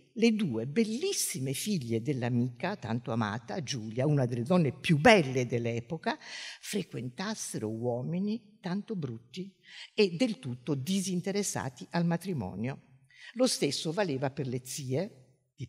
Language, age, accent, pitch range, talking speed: Italian, 50-69, native, 130-215 Hz, 120 wpm